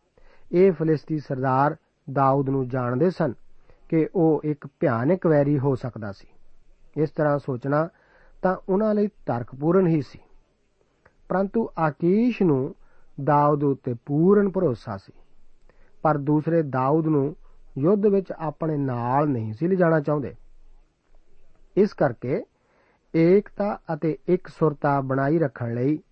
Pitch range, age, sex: 135-175 Hz, 50-69, male